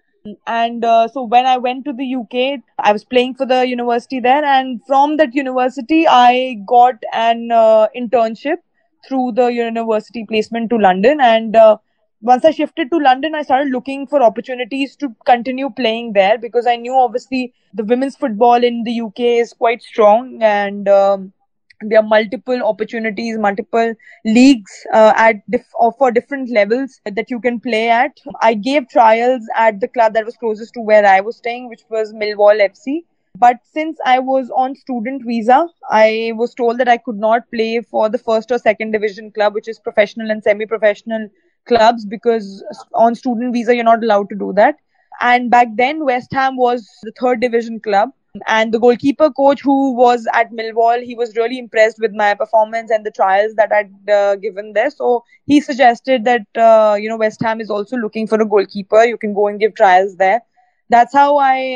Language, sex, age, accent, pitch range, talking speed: English, female, 20-39, Indian, 215-255 Hz, 190 wpm